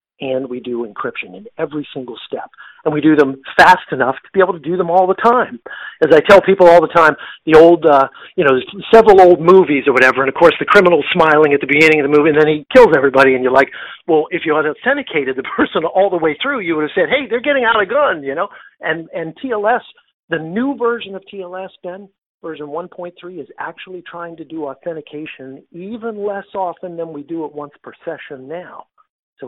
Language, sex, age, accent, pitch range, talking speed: English, male, 50-69, American, 140-185 Hz, 230 wpm